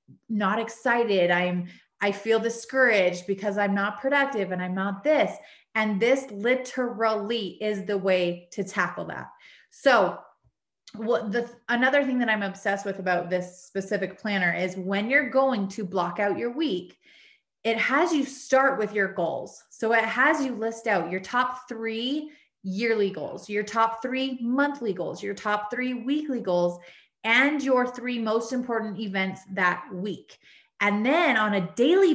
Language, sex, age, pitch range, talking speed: English, female, 30-49, 195-250 Hz, 160 wpm